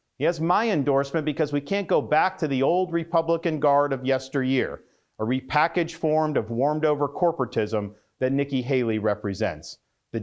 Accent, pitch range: American, 125-165 Hz